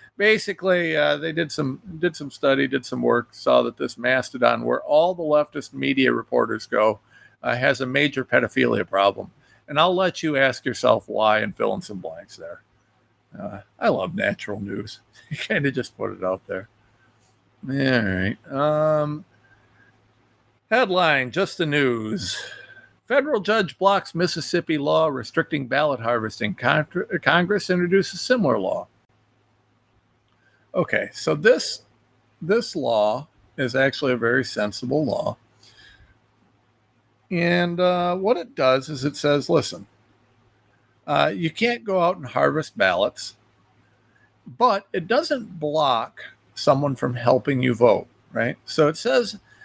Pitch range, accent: 120-170 Hz, American